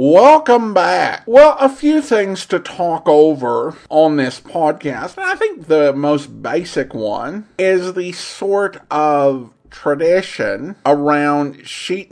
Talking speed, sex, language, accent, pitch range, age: 125 wpm, male, English, American, 140-200 Hz, 50-69